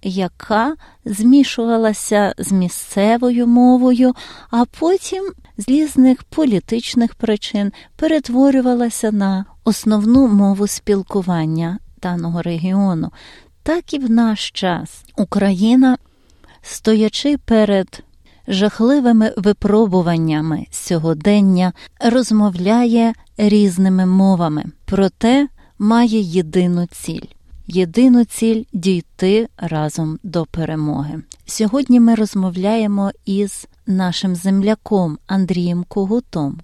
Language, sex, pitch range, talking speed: Ukrainian, female, 185-230 Hz, 85 wpm